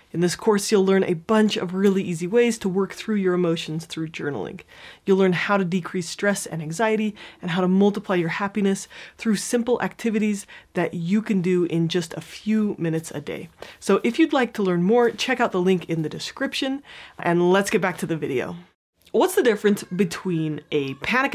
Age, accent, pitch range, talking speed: 30-49, American, 170-225 Hz, 205 wpm